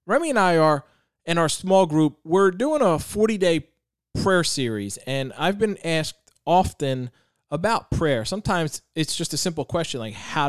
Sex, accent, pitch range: male, American, 145-180 Hz